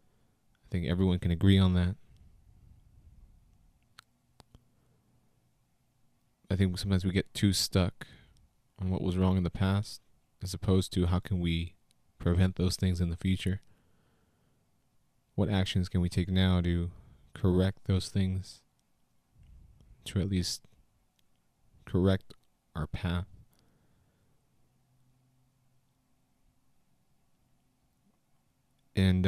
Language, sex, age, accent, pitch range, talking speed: English, male, 30-49, American, 90-110 Hz, 100 wpm